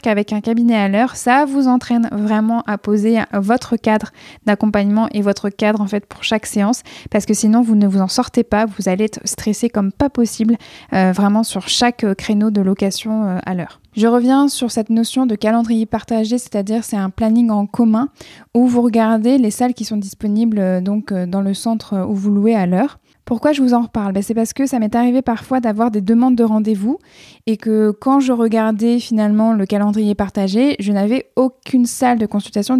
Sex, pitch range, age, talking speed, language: female, 210-240 Hz, 20-39, 205 wpm, French